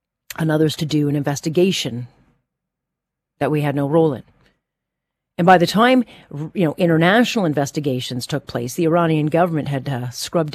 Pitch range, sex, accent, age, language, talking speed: 140-170 Hz, female, American, 40-59, English, 160 wpm